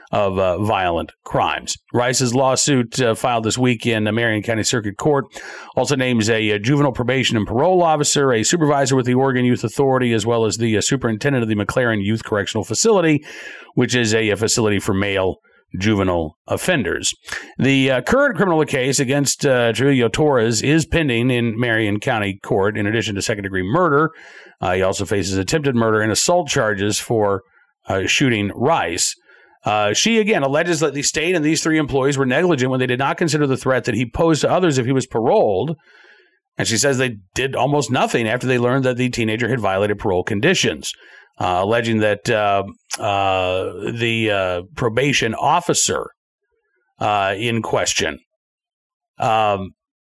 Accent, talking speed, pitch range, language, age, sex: American, 175 wpm, 110-145 Hz, English, 50-69, male